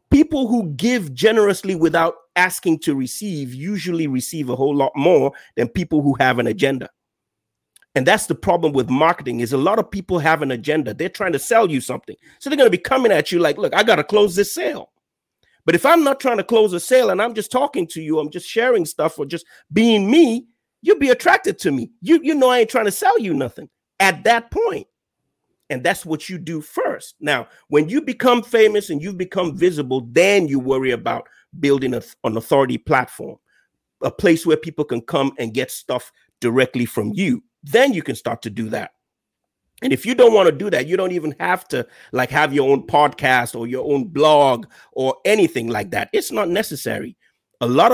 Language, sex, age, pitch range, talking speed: English, male, 40-59, 140-230 Hz, 215 wpm